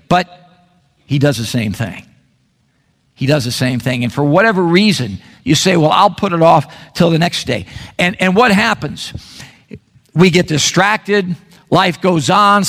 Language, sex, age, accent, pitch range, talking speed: English, male, 50-69, American, 160-210 Hz, 170 wpm